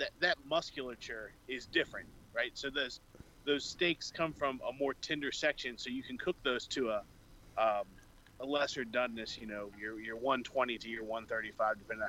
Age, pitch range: 30-49, 120-155 Hz